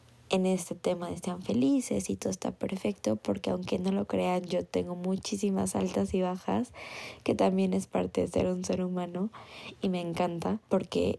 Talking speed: 180 wpm